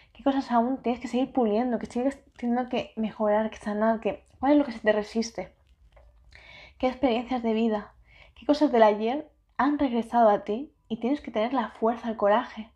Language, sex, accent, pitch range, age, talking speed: Spanish, female, Spanish, 215-250 Hz, 20-39, 195 wpm